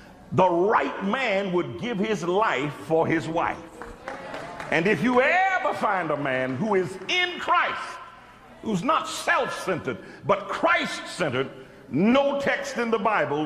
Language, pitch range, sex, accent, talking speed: English, 145-235 Hz, male, American, 140 wpm